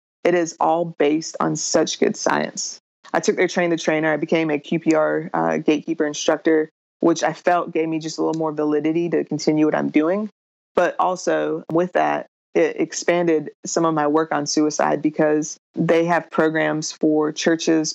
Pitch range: 155-170 Hz